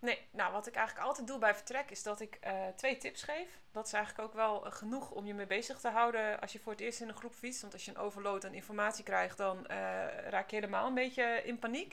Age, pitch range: 30-49, 195-235 Hz